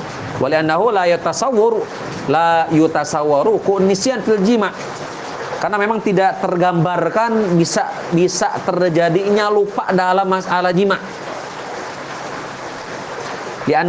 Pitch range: 165-205 Hz